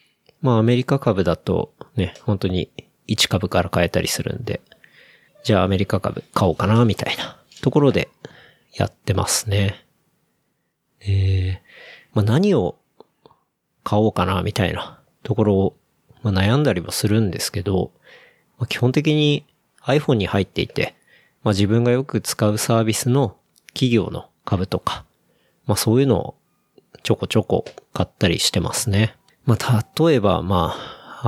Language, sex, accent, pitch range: Japanese, male, native, 95-120 Hz